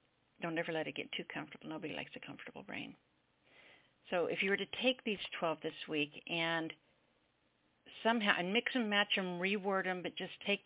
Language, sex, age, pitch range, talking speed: English, female, 50-69, 155-190 Hz, 190 wpm